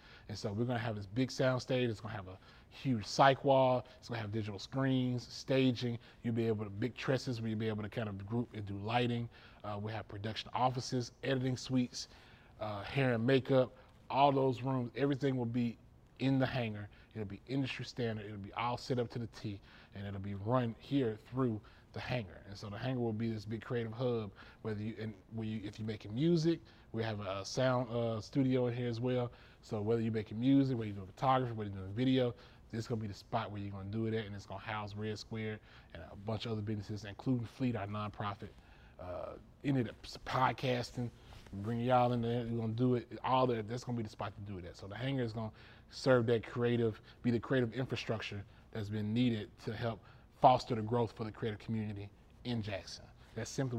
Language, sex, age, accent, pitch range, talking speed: English, male, 20-39, American, 110-125 Hz, 230 wpm